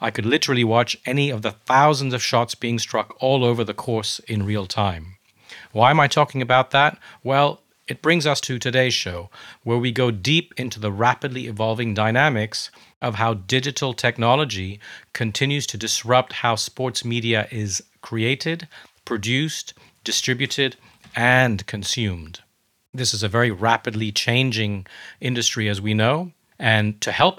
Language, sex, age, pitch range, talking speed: English, male, 40-59, 110-130 Hz, 155 wpm